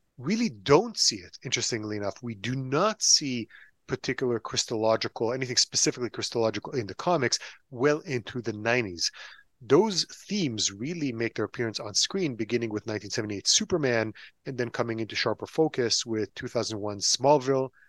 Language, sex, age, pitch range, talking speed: English, male, 30-49, 110-130 Hz, 145 wpm